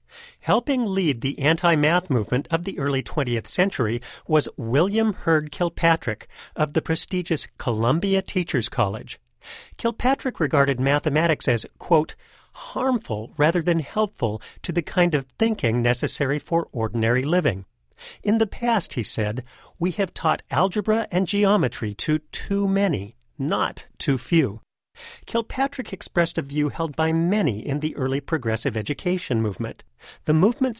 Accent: American